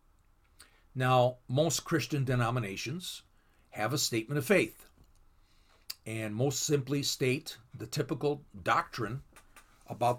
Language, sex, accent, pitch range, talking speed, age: English, male, American, 115-170 Hz, 100 wpm, 50-69